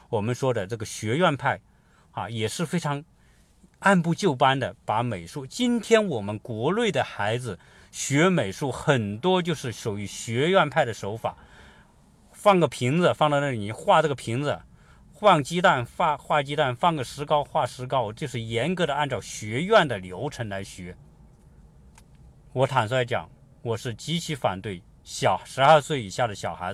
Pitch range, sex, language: 110-155 Hz, male, Chinese